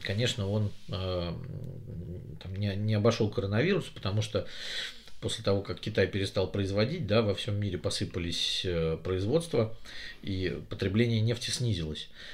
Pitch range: 95-115 Hz